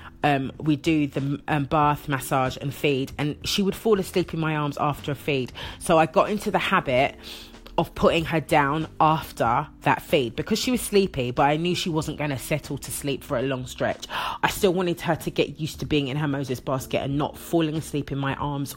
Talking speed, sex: 225 wpm, female